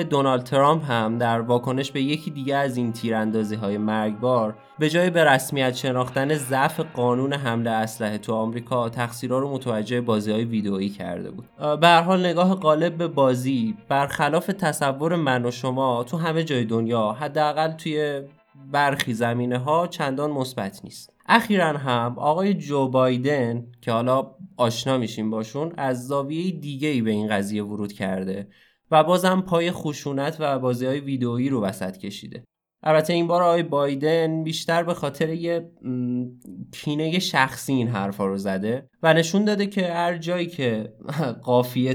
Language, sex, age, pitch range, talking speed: Persian, male, 20-39, 120-155 Hz, 150 wpm